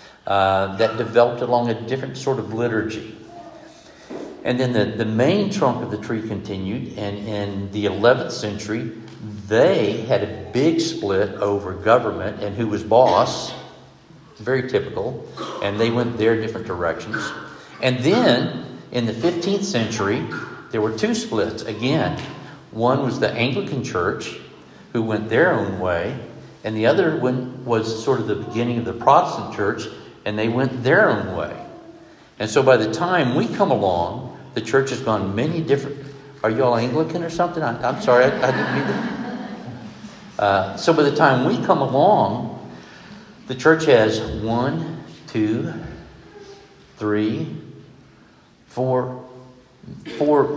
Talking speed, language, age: 150 wpm, English, 60-79